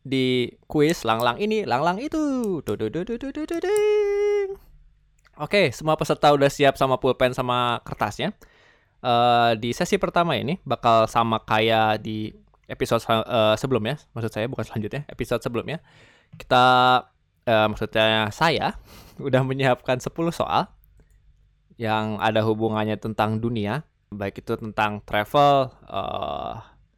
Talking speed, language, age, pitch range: 115 wpm, Indonesian, 20-39, 110-135 Hz